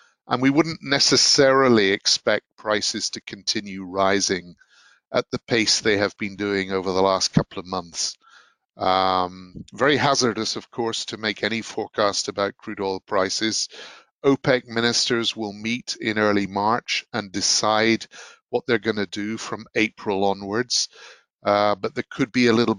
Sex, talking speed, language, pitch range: male, 155 wpm, English, 100-115 Hz